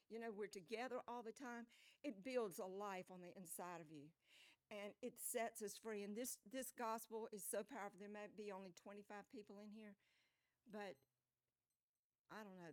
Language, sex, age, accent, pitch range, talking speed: English, female, 60-79, American, 175-220 Hz, 190 wpm